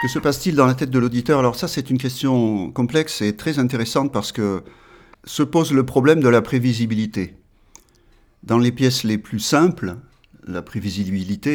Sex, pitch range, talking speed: male, 105-140 Hz, 175 wpm